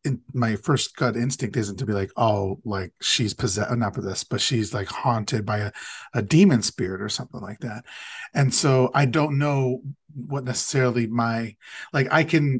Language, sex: English, male